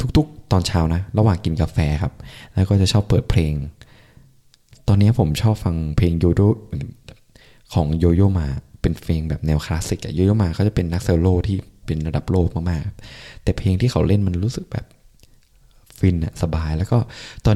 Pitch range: 80-110 Hz